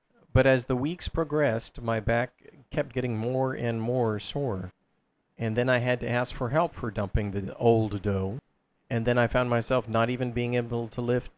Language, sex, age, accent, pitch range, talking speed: English, male, 50-69, American, 110-135 Hz, 195 wpm